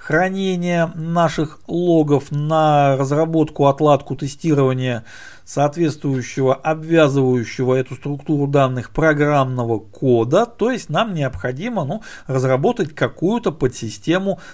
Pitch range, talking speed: 130-175 Hz, 85 wpm